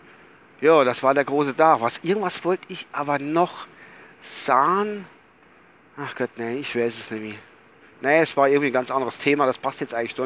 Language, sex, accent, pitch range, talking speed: German, male, German, 145-230 Hz, 195 wpm